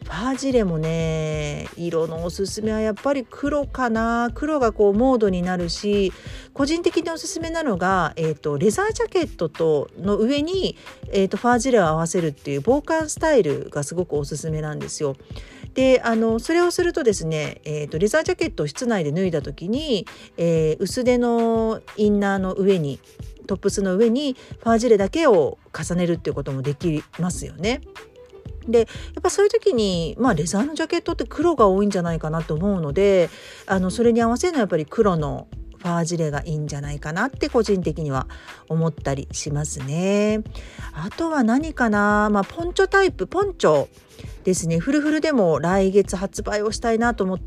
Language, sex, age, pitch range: Japanese, female, 40-59, 165-255 Hz